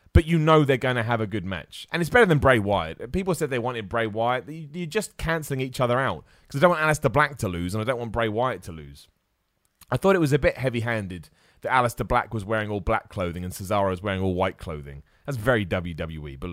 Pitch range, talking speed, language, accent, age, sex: 100-150 Hz, 255 wpm, English, British, 30-49, male